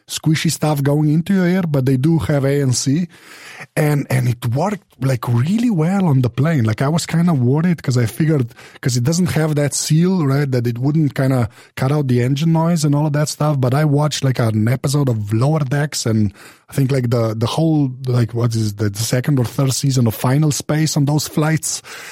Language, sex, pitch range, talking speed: English, male, 115-150 Hz, 225 wpm